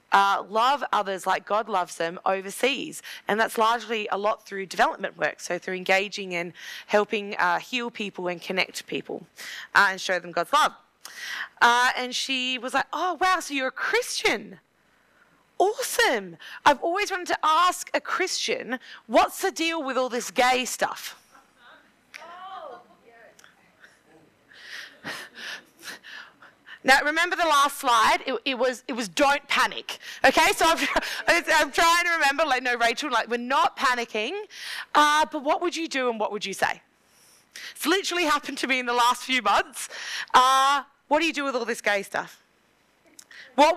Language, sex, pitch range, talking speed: English, female, 225-320 Hz, 160 wpm